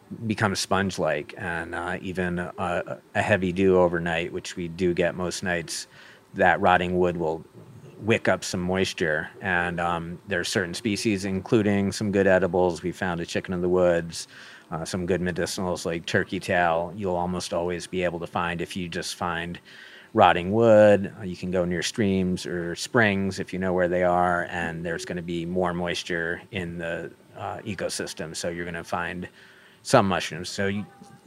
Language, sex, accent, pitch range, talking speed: English, male, American, 85-100 Hz, 180 wpm